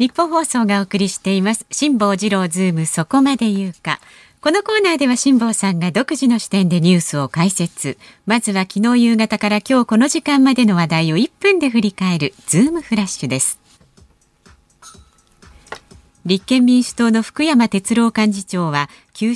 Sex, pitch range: female, 175-260 Hz